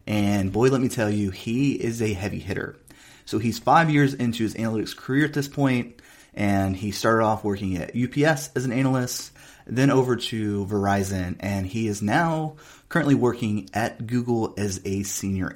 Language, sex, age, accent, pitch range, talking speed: English, male, 30-49, American, 100-130 Hz, 180 wpm